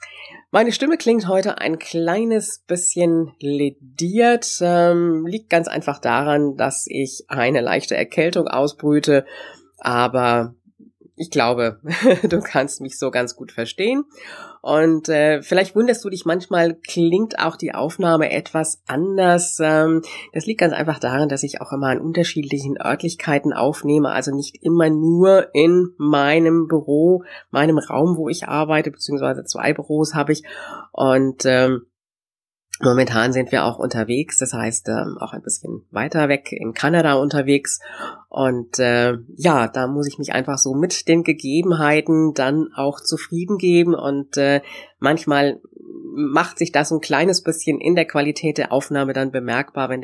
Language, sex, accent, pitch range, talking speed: German, female, German, 135-170 Hz, 150 wpm